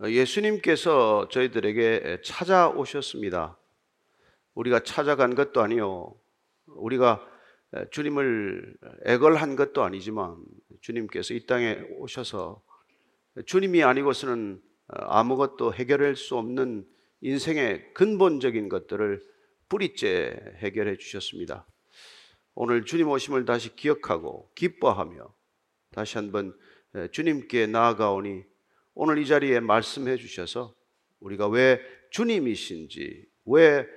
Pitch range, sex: 120-205 Hz, male